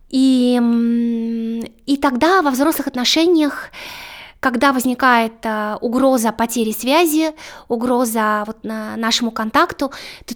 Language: Russian